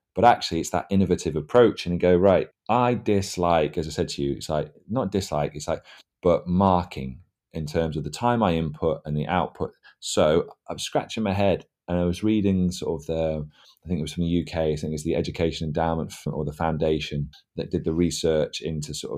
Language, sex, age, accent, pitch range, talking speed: English, male, 30-49, British, 75-95 Hz, 215 wpm